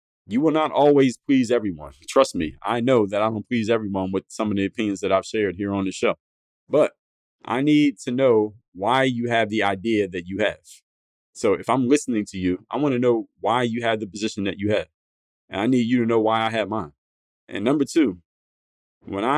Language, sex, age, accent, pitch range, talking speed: English, male, 30-49, American, 95-120 Hz, 225 wpm